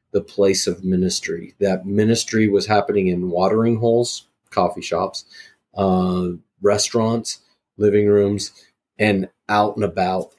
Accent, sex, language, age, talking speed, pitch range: American, male, English, 30-49, 120 wpm, 95-105 Hz